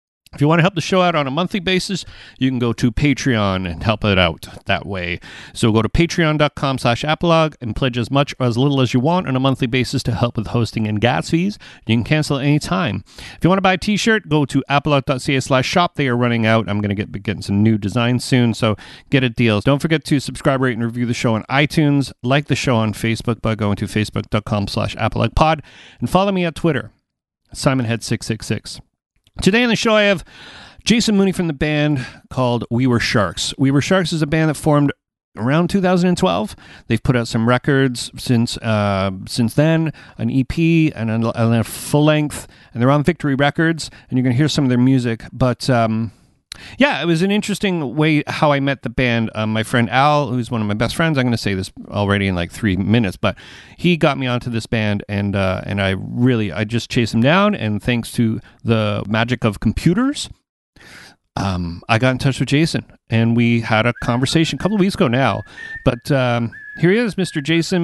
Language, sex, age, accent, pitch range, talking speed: English, male, 40-59, American, 115-155 Hz, 220 wpm